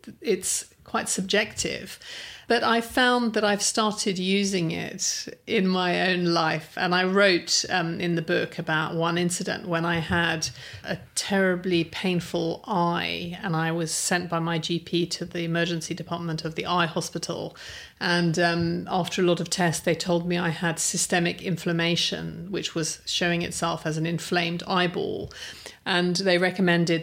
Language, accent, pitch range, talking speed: English, British, 170-195 Hz, 160 wpm